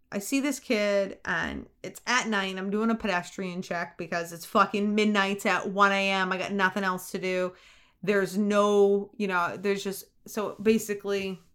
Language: English